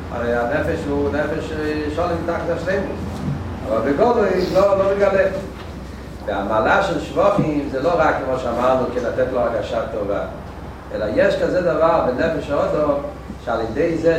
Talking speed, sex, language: 150 wpm, male, Hebrew